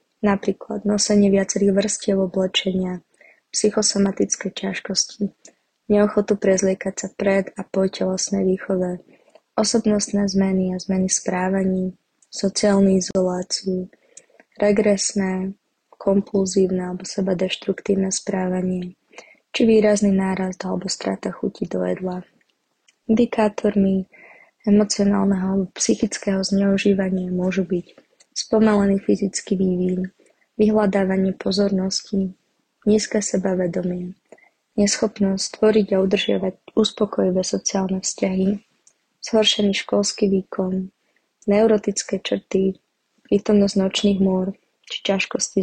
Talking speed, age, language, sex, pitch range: 85 wpm, 20-39, Slovak, female, 190-205 Hz